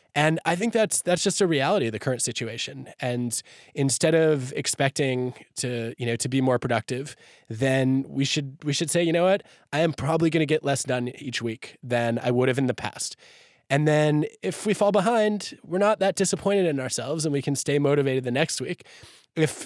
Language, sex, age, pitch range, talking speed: English, male, 20-39, 130-180 Hz, 215 wpm